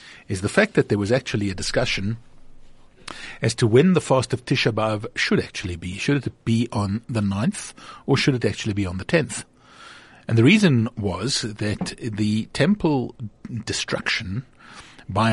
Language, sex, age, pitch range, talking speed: English, male, 50-69, 105-125 Hz, 170 wpm